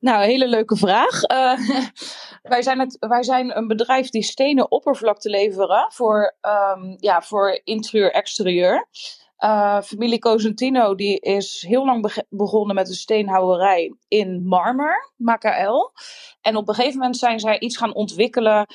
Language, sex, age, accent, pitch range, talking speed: Dutch, female, 20-39, Dutch, 190-230 Hz, 150 wpm